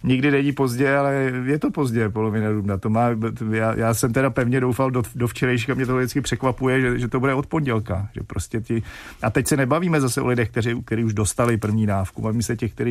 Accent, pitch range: native, 110-125 Hz